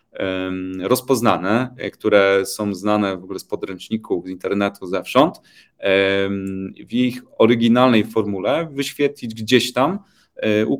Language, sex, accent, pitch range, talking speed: Polish, male, native, 95-120 Hz, 105 wpm